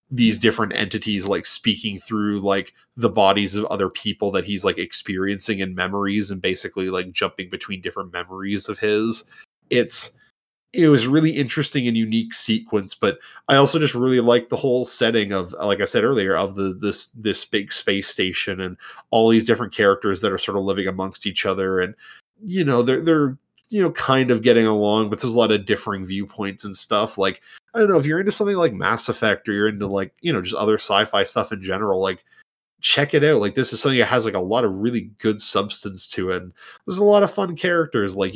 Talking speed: 215 wpm